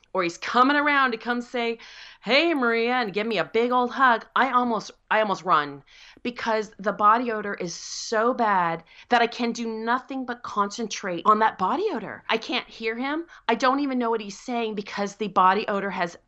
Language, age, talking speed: English, 30-49, 200 wpm